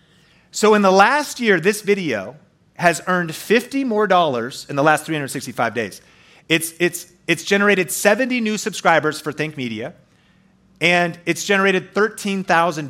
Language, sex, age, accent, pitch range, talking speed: English, male, 30-49, American, 155-210 Hz, 140 wpm